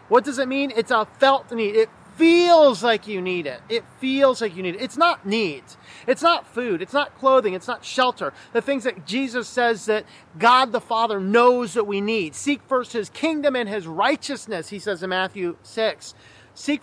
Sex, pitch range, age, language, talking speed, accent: male, 210-265 Hz, 30-49, English, 205 wpm, American